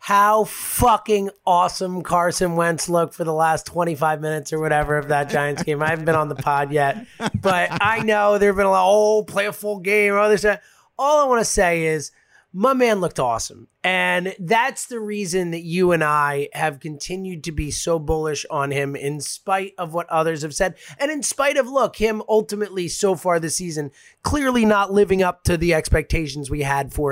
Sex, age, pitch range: male, 30-49, 155-205 Hz